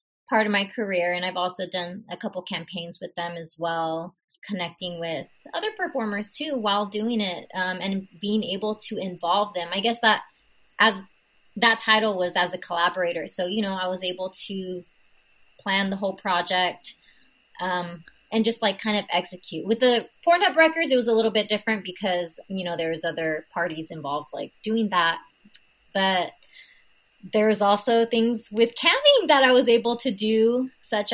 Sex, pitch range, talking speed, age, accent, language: female, 180-215 Hz, 175 wpm, 20-39, American, English